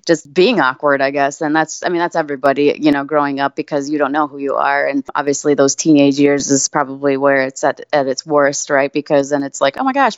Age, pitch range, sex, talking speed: 20-39, 145-170 Hz, female, 255 wpm